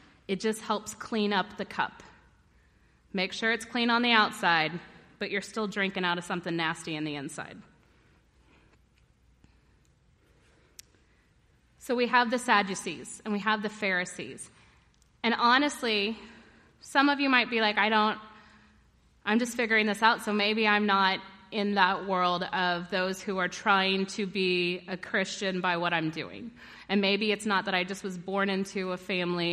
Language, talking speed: English, 165 wpm